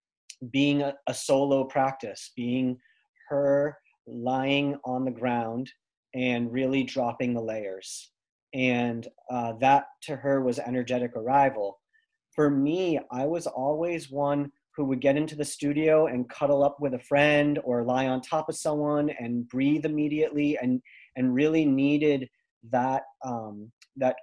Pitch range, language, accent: 125-145 Hz, English, American